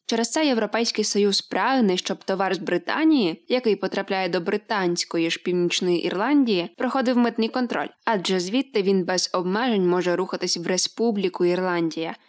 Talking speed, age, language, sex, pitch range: 140 wpm, 20-39, Ukrainian, female, 180-230 Hz